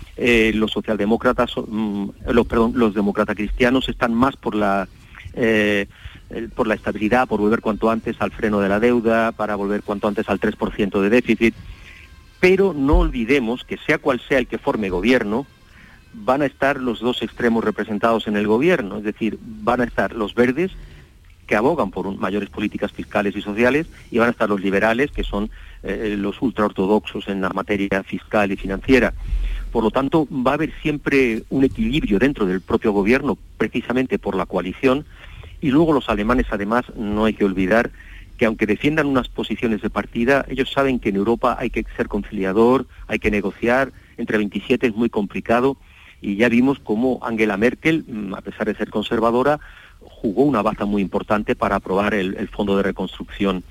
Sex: male